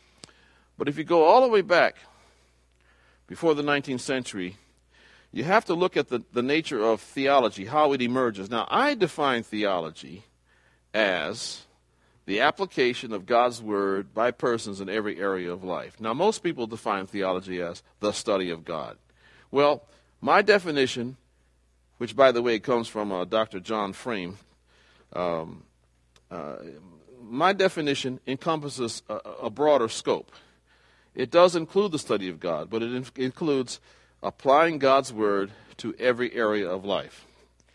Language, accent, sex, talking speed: English, American, male, 145 wpm